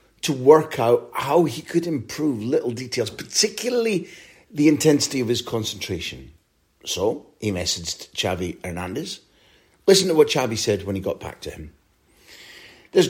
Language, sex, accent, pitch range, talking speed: English, male, British, 100-145 Hz, 145 wpm